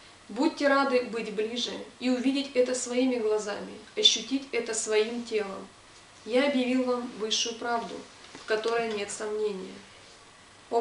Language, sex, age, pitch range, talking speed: Russian, female, 20-39, 220-255 Hz, 130 wpm